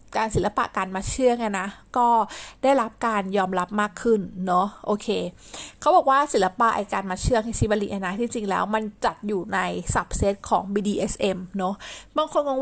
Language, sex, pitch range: Thai, female, 190-235 Hz